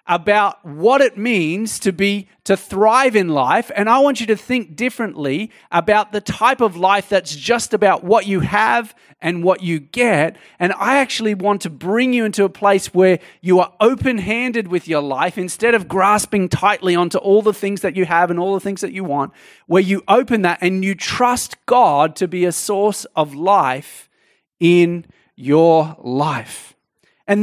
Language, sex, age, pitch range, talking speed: English, male, 30-49, 175-215 Hz, 185 wpm